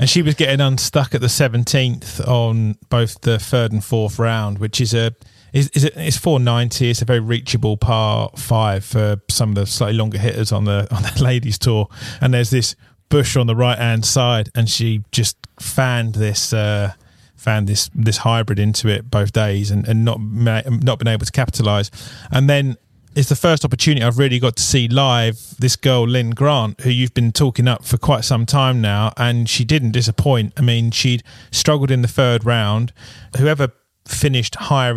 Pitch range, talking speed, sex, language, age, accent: 110-125 Hz, 195 wpm, male, English, 30-49, British